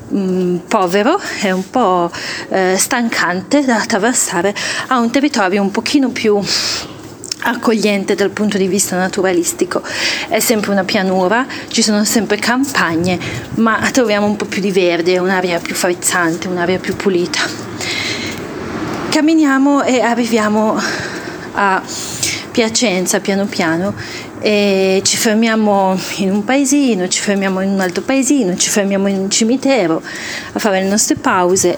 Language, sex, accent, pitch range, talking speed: Italian, female, native, 190-230 Hz, 130 wpm